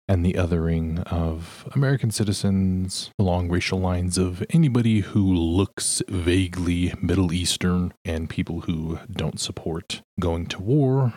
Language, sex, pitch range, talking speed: English, male, 95-150 Hz, 130 wpm